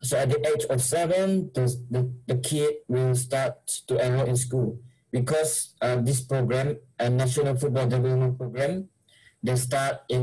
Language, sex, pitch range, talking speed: English, male, 125-145 Hz, 170 wpm